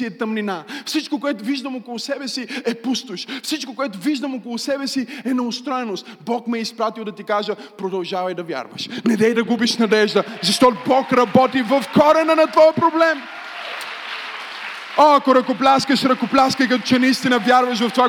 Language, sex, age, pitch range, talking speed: Bulgarian, male, 20-39, 235-290 Hz, 165 wpm